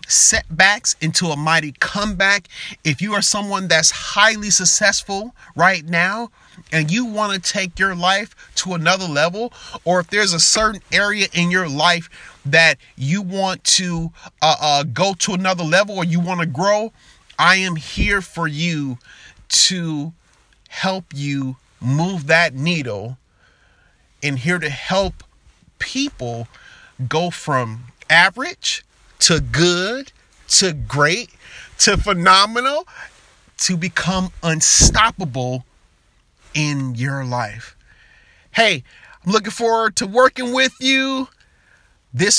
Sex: male